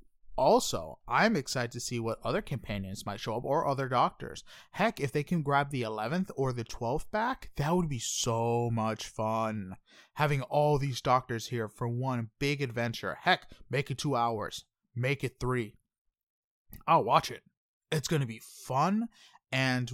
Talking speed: 170 wpm